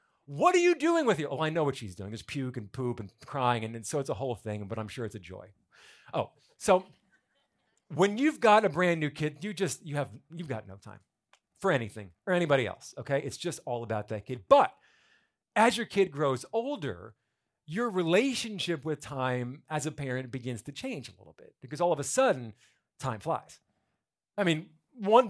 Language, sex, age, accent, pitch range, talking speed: English, male, 40-59, American, 115-180 Hz, 210 wpm